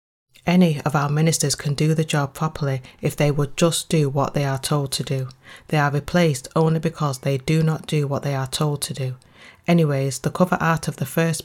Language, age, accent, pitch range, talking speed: English, 30-49, British, 135-160 Hz, 220 wpm